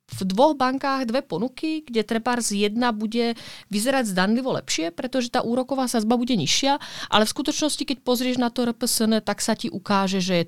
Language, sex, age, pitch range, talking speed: Czech, female, 30-49, 185-260 Hz, 190 wpm